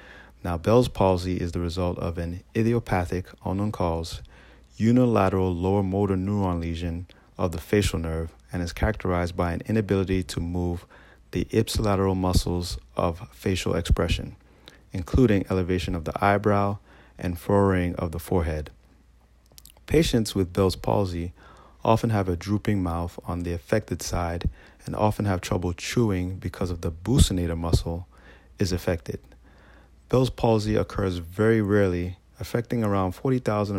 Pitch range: 85-100 Hz